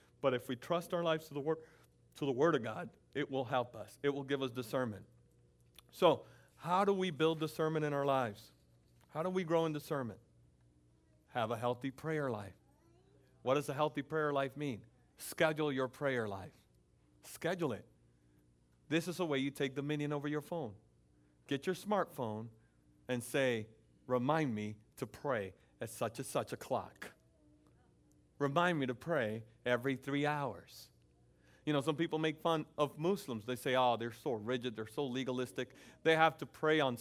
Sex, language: male, English